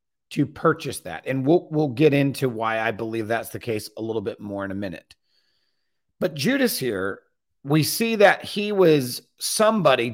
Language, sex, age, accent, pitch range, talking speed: English, male, 40-59, American, 135-205 Hz, 180 wpm